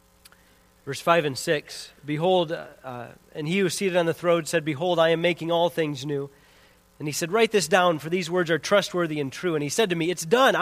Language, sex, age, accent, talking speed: English, male, 40-59, American, 235 wpm